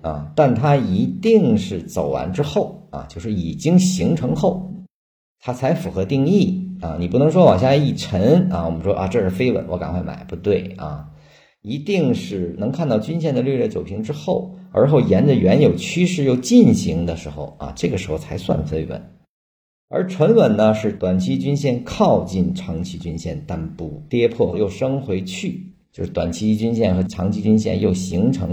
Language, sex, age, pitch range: Chinese, male, 50-69, 90-155 Hz